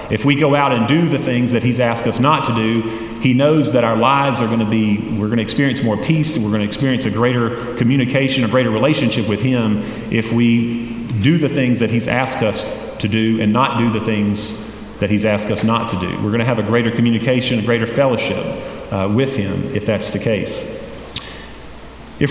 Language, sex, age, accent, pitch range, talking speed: English, male, 40-59, American, 110-145 Hz, 225 wpm